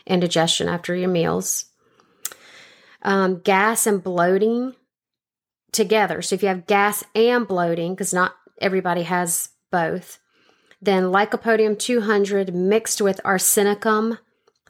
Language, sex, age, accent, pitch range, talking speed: English, female, 30-49, American, 185-215 Hz, 115 wpm